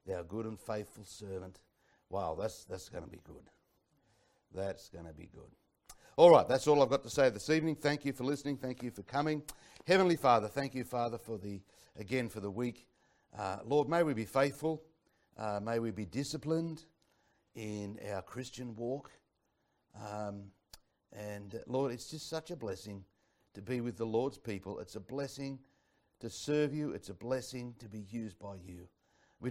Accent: Australian